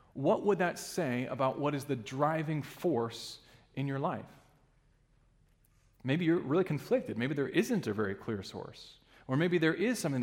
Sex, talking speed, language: male, 170 wpm, English